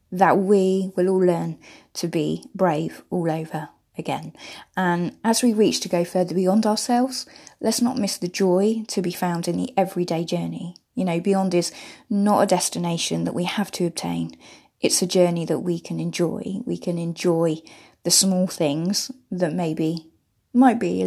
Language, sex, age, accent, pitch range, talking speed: English, female, 20-39, British, 170-200 Hz, 175 wpm